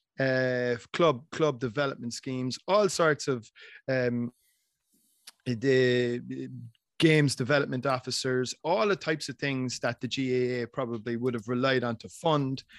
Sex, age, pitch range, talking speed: male, 30-49, 120-135 Hz, 130 wpm